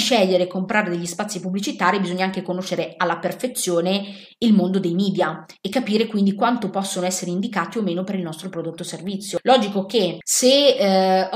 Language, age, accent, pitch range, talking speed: Italian, 20-39, native, 180-215 Hz, 180 wpm